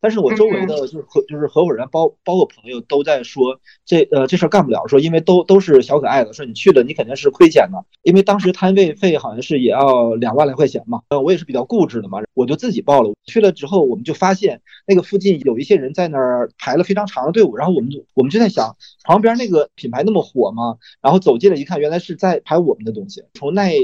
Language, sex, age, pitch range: Chinese, male, 30-49, 125-195 Hz